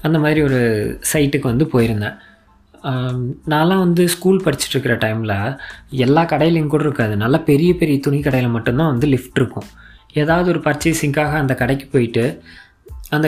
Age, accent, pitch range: 20-39, native, 120-160 Hz